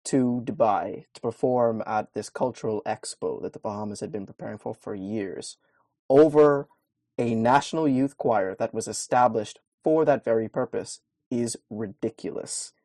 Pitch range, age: 110-150 Hz, 20-39